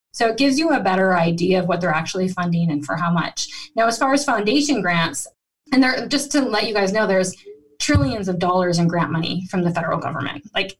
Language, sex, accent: English, female, American